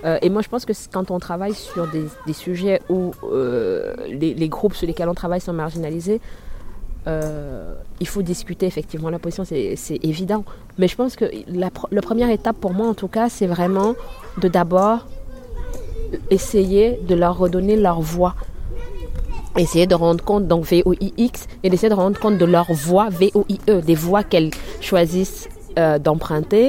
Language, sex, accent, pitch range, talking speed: French, female, French, 155-190 Hz, 175 wpm